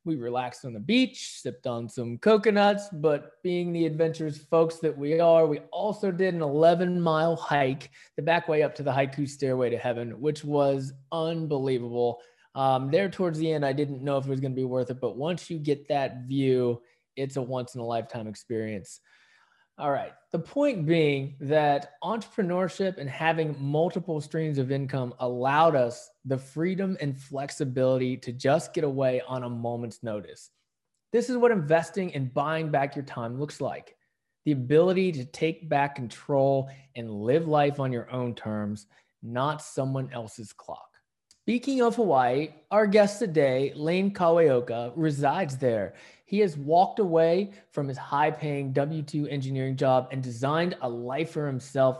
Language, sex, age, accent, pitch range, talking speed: English, male, 20-39, American, 130-165 Hz, 165 wpm